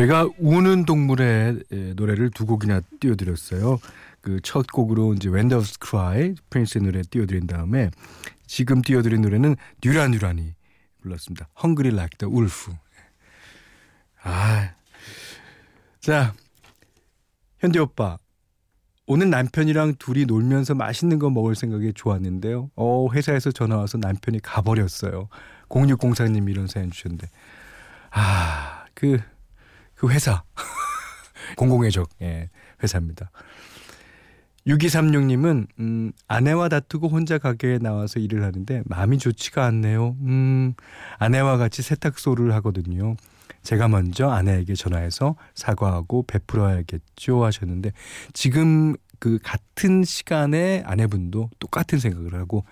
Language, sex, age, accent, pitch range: Korean, male, 40-59, native, 95-130 Hz